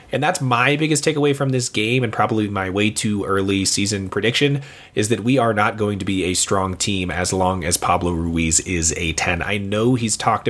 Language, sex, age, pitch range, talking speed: English, male, 30-49, 95-120 Hz, 225 wpm